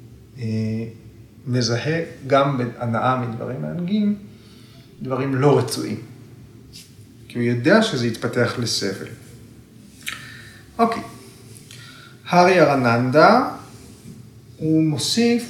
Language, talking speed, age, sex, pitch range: Hebrew, 75 wpm, 30-49, male, 115-155 Hz